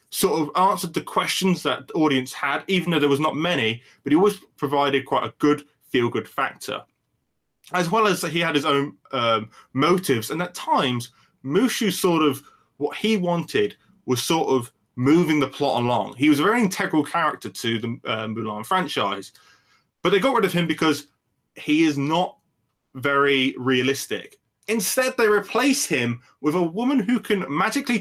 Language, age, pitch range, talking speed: English, 20-39, 130-185 Hz, 175 wpm